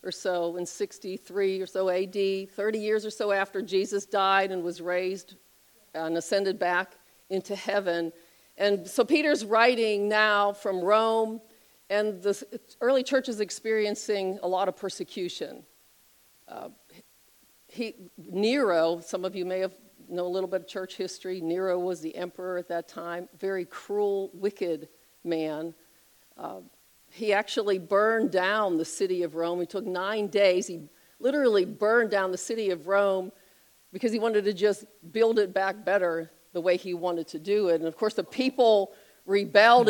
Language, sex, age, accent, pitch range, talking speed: English, female, 50-69, American, 175-210 Hz, 160 wpm